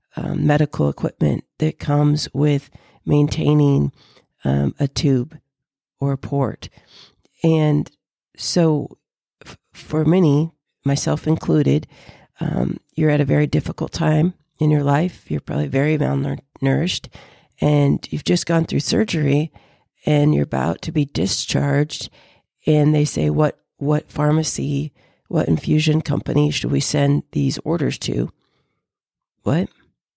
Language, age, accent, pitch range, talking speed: English, 40-59, American, 135-160 Hz, 125 wpm